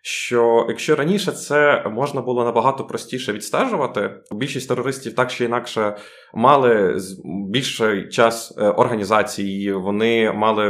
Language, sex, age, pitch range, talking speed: Ukrainian, male, 20-39, 95-120 Hz, 110 wpm